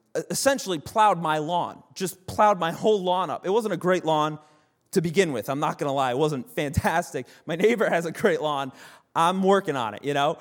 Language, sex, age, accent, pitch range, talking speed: English, male, 30-49, American, 165-235 Hz, 220 wpm